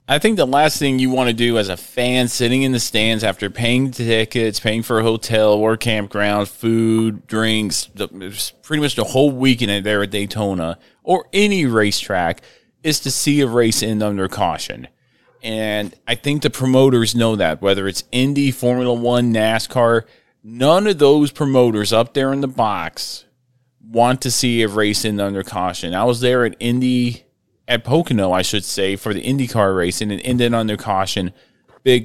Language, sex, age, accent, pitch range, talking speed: English, male, 30-49, American, 110-130 Hz, 185 wpm